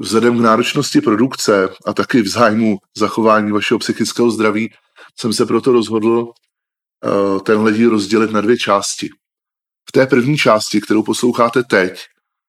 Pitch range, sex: 105-115 Hz, male